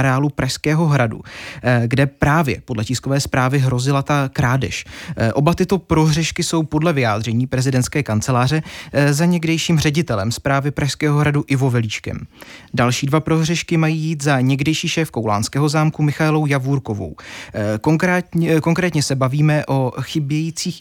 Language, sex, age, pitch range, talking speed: Czech, male, 20-39, 130-160 Hz, 125 wpm